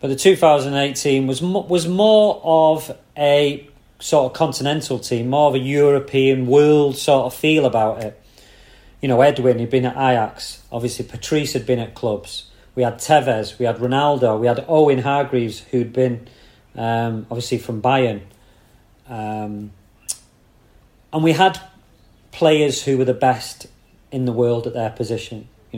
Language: English